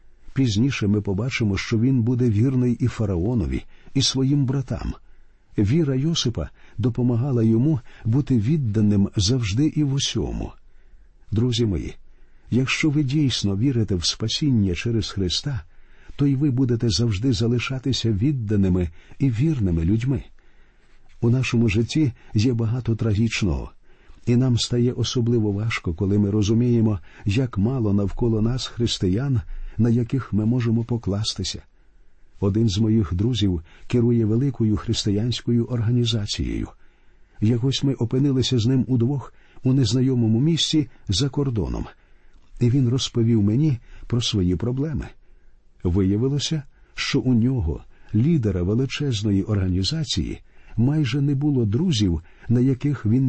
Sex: male